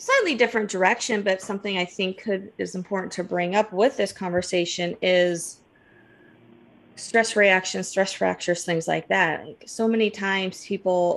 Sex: female